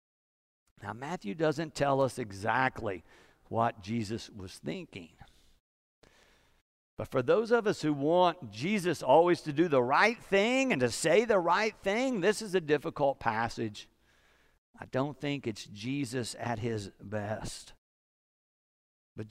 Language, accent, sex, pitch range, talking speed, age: English, American, male, 130-195 Hz, 135 wpm, 50-69